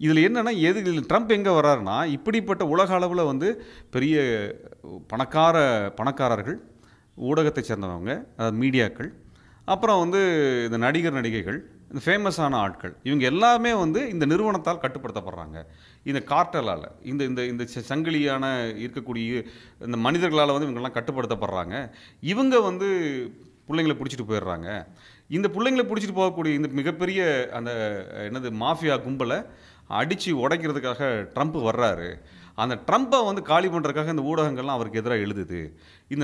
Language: Tamil